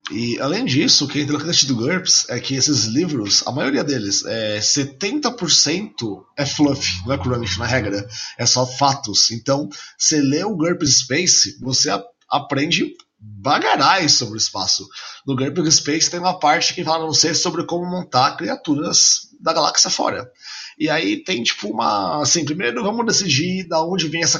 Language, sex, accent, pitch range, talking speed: Portuguese, male, Brazilian, 135-170 Hz, 170 wpm